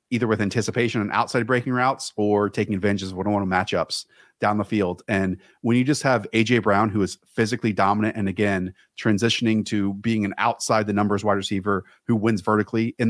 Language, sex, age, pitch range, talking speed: English, male, 30-49, 105-130 Hz, 200 wpm